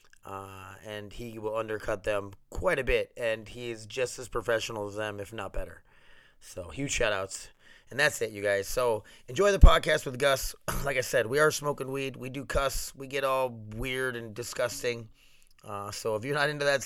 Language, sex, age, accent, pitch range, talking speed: English, male, 30-49, American, 105-140 Hz, 205 wpm